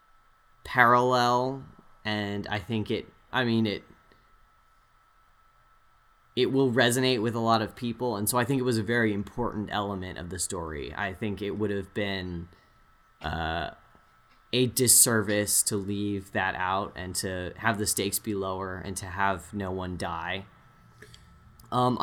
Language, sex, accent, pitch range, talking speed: English, male, American, 105-120 Hz, 155 wpm